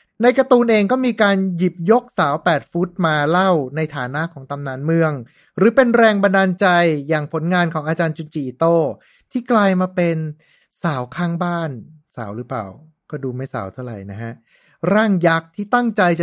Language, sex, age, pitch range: Thai, male, 20-39, 150-210 Hz